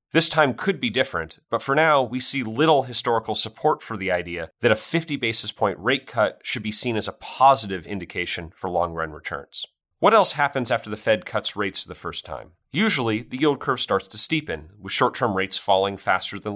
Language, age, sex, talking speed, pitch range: English, 30-49, male, 205 wpm, 95-120 Hz